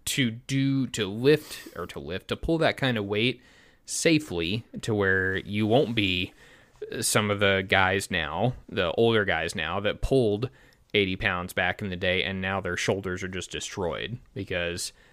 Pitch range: 90-110 Hz